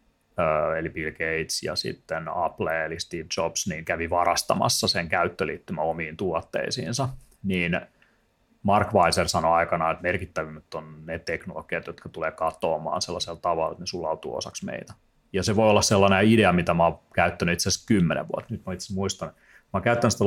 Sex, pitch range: male, 85-105 Hz